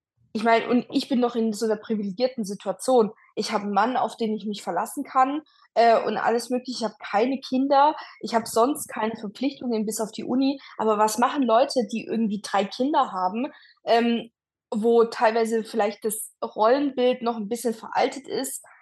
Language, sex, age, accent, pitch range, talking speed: German, female, 20-39, German, 215-250 Hz, 185 wpm